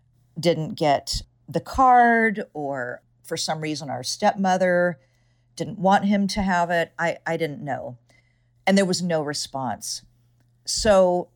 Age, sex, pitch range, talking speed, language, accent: 50-69, female, 130-180 Hz, 135 wpm, English, American